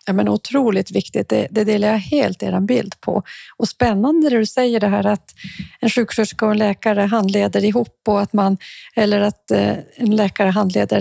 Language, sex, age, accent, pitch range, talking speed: Swedish, female, 40-59, native, 200-230 Hz, 185 wpm